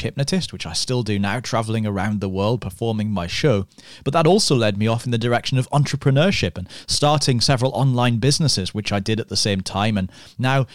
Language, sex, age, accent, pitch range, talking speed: English, male, 30-49, British, 100-125 Hz, 210 wpm